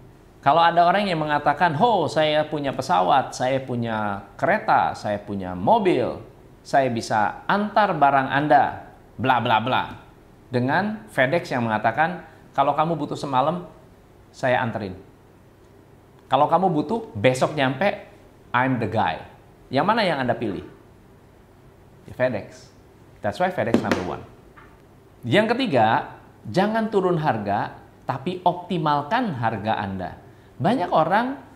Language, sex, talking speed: Indonesian, male, 120 wpm